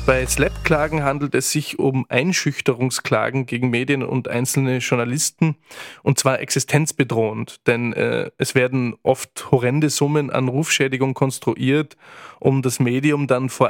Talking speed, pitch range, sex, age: 130 wpm, 125-145 Hz, male, 20-39